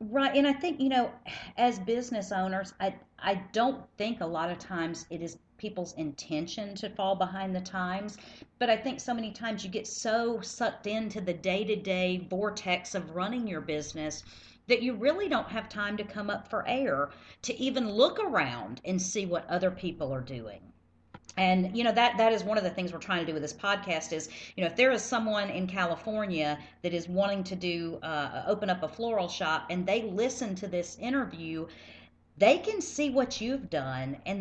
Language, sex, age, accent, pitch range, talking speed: English, female, 40-59, American, 155-215 Hz, 205 wpm